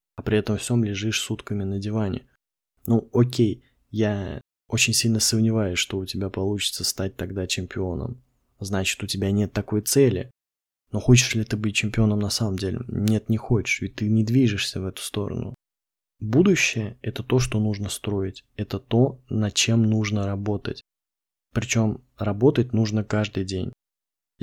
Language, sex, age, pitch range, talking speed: Russian, male, 20-39, 100-120 Hz, 155 wpm